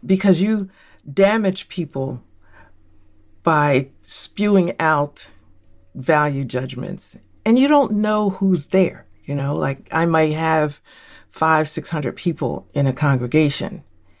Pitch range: 140-190 Hz